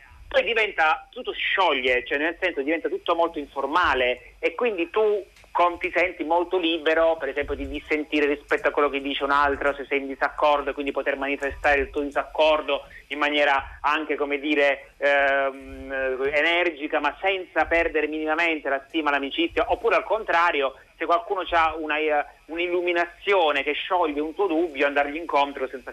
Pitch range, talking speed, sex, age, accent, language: 140-180 Hz, 160 wpm, male, 30-49, native, Italian